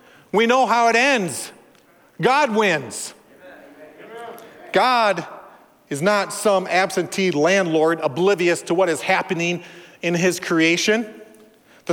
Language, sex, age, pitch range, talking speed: English, male, 40-59, 195-270 Hz, 110 wpm